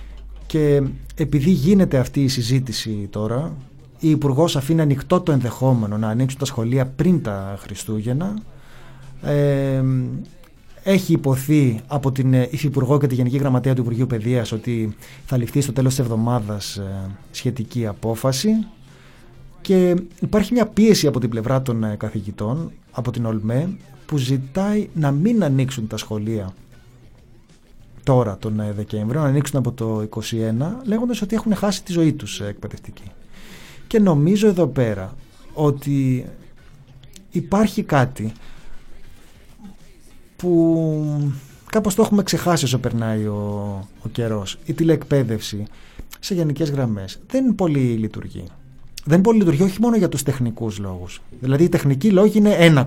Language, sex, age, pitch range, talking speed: Greek, male, 30-49, 115-160 Hz, 130 wpm